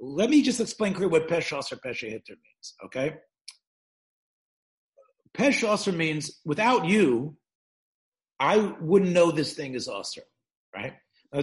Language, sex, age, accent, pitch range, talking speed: English, male, 50-69, American, 160-240 Hz, 125 wpm